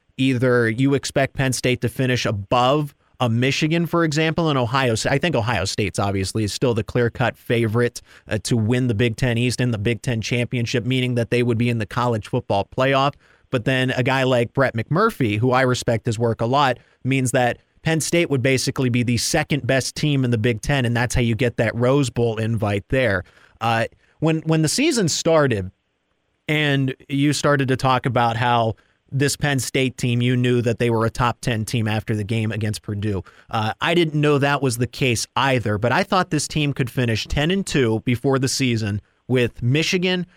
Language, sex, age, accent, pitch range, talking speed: English, male, 30-49, American, 115-140 Hz, 205 wpm